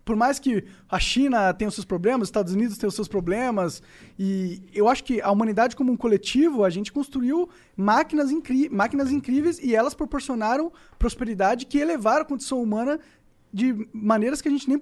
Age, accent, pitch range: 20-39, Brazilian, 215-280 Hz